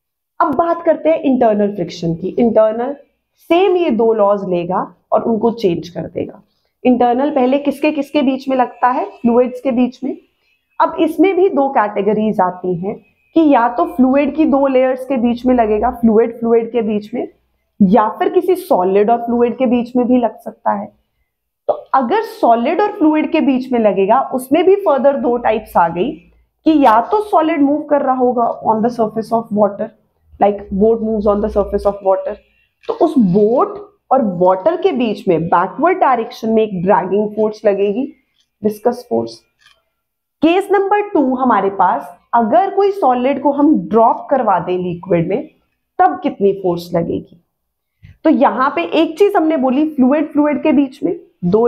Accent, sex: native, female